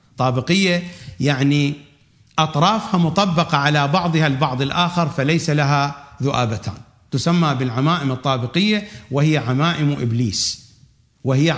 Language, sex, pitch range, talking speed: English, male, 125-175 Hz, 95 wpm